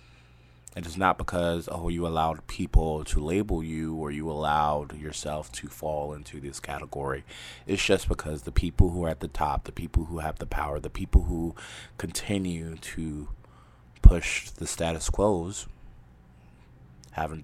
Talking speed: 160 wpm